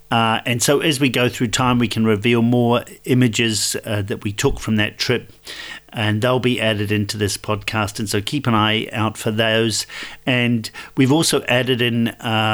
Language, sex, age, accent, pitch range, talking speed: English, male, 50-69, British, 110-125 Hz, 195 wpm